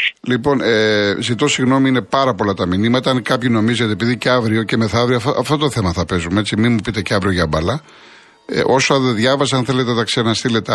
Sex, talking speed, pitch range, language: male, 205 wpm, 110-135 Hz, Greek